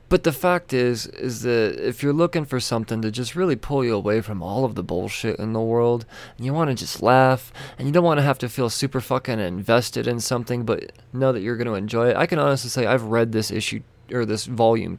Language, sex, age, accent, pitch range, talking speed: English, male, 20-39, American, 115-140 Hz, 250 wpm